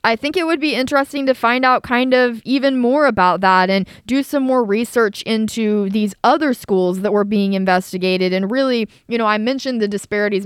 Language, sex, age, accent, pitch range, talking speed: English, female, 20-39, American, 195-240 Hz, 205 wpm